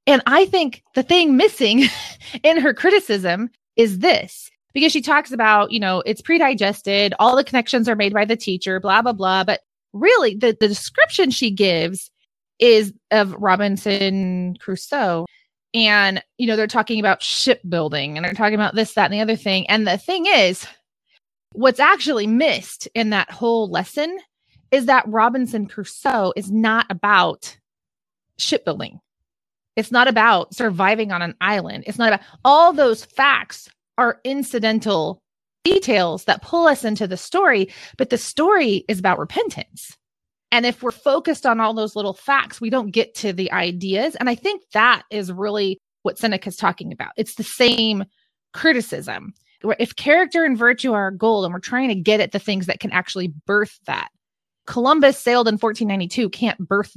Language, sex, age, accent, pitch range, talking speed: English, female, 20-39, American, 200-260 Hz, 170 wpm